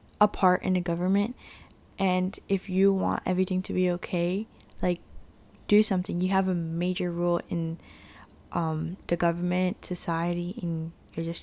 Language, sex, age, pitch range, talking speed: English, female, 10-29, 175-200 Hz, 150 wpm